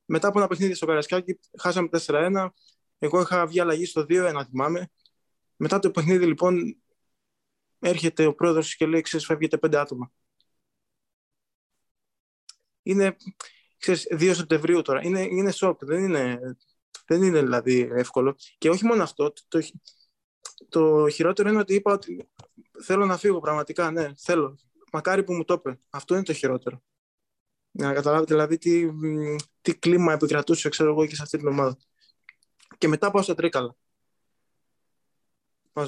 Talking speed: 150 wpm